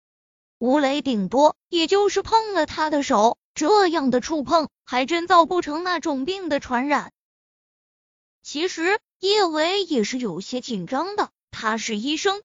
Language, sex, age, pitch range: Chinese, female, 20-39, 255-365 Hz